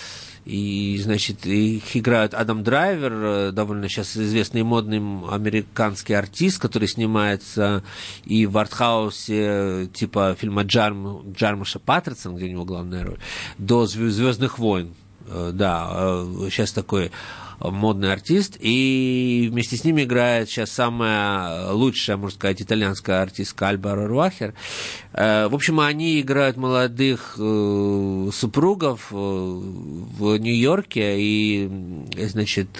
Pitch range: 100-120 Hz